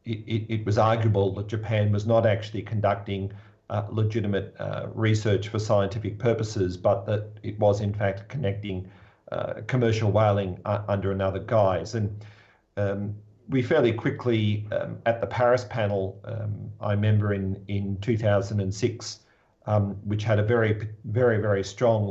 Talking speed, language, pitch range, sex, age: 150 wpm, English, 100-115 Hz, male, 50-69